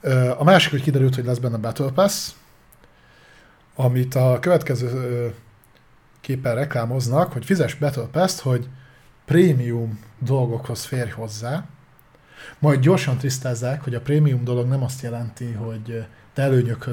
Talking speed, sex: 125 wpm, male